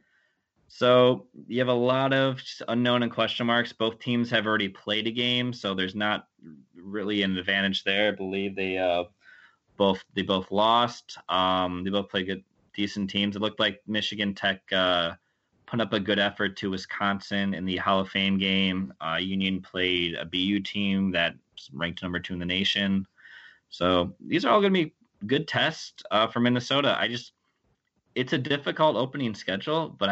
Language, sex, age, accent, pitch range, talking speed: English, male, 20-39, American, 95-110 Hz, 180 wpm